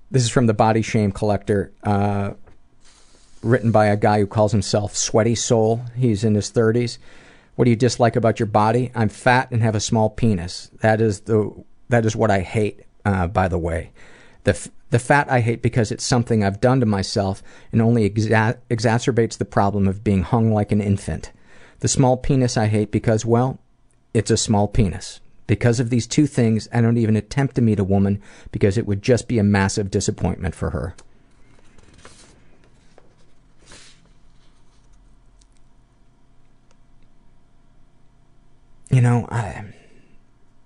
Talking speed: 160 wpm